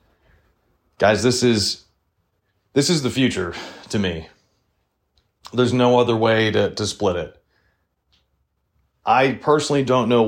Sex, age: male, 30-49